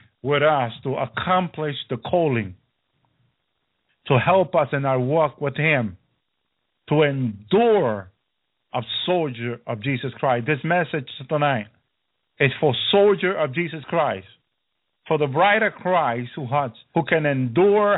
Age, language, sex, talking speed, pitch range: 50-69, English, male, 135 wpm, 125-170 Hz